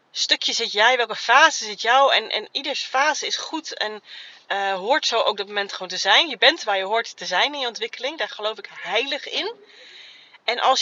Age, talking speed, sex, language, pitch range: 30-49, 220 wpm, female, Dutch, 200-265 Hz